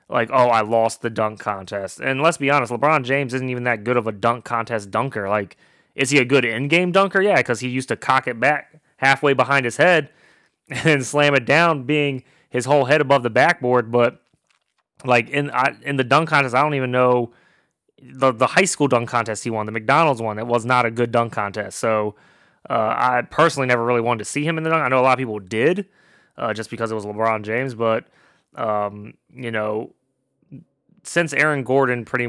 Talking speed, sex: 220 wpm, male